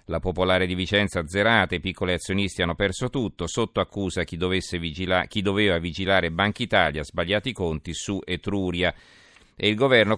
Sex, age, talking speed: male, 40-59, 160 wpm